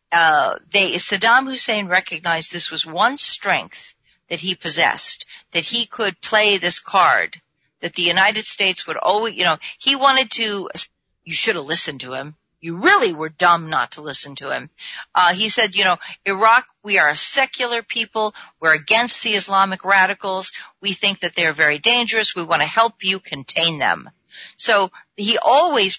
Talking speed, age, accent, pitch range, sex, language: 175 wpm, 50-69, American, 170-235 Hz, female, English